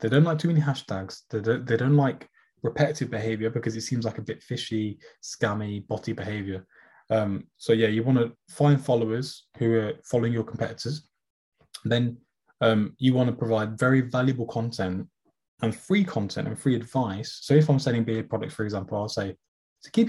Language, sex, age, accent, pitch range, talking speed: English, male, 20-39, British, 105-135 Hz, 185 wpm